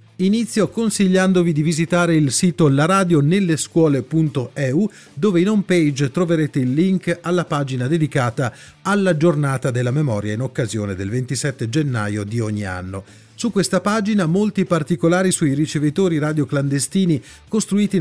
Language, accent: Italian, native